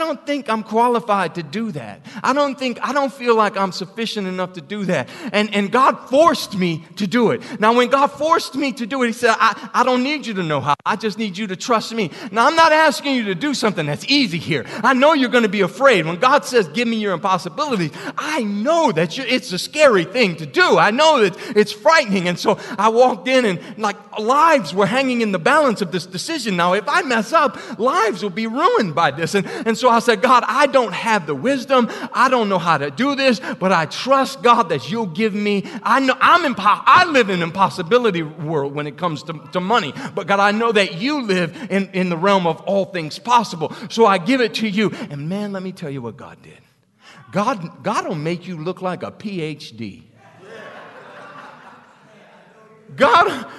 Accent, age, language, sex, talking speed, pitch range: American, 30-49, English, male, 225 wpm, 185-250 Hz